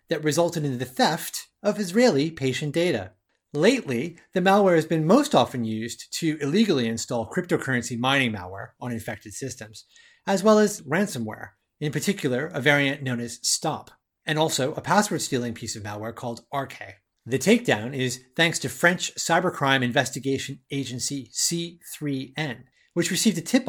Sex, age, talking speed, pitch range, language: male, 30-49, 150 wpm, 125-195 Hz, English